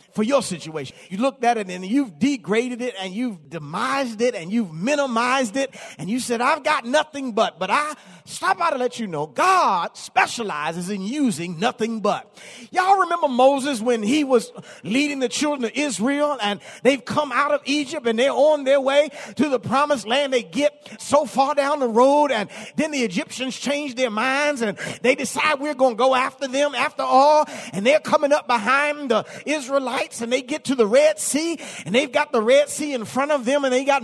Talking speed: 210 wpm